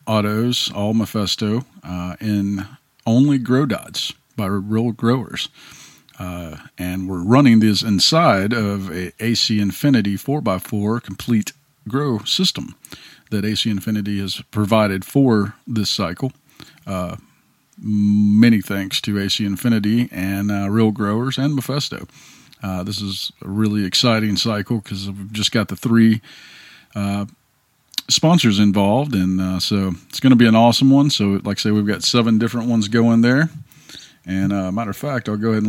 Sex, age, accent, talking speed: male, 40-59, American, 155 wpm